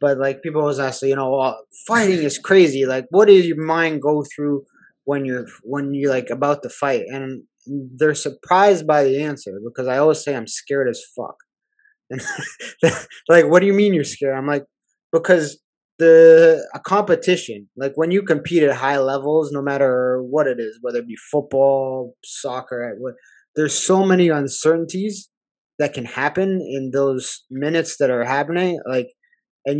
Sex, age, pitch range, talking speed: male, 20-39, 140-170 Hz, 175 wpm